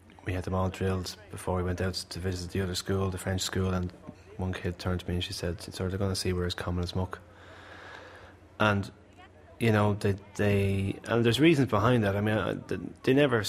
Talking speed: 225 wpm